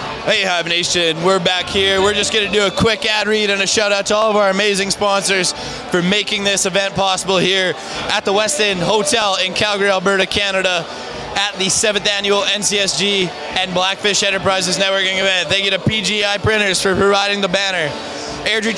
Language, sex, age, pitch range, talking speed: English, male, 20-39, 165-200 Hz, 190 wpm